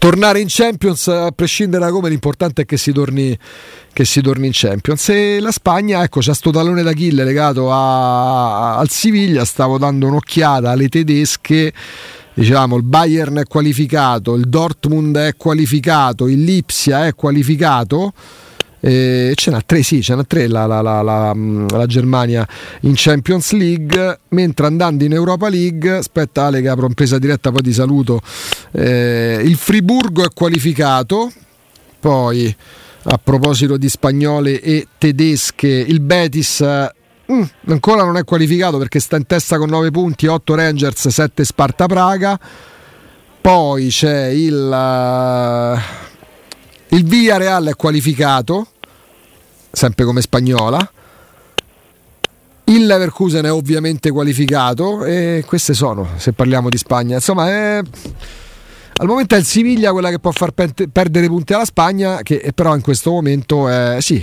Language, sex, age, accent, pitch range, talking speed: Italian, male, 30-49, native, 130-175 Hz, 150 wpm